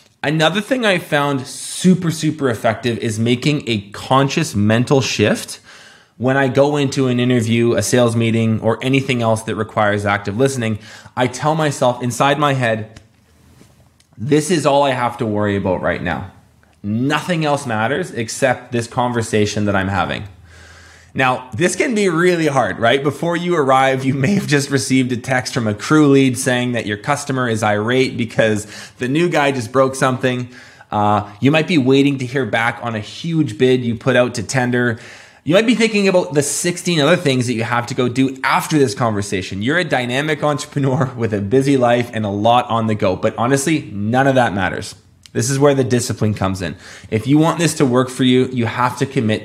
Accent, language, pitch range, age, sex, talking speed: American, English, 110-140 Hz, 20-39, male, 195 wpm